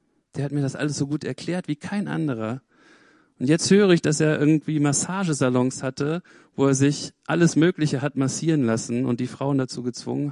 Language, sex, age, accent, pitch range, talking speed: German, male, 40-59, German, 120-170 Hz, 190 wpm